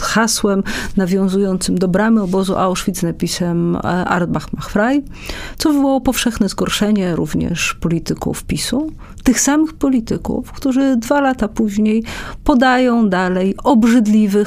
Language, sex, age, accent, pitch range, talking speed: Polish, female, 40-59, native, 195-265 Hz, 110 wpm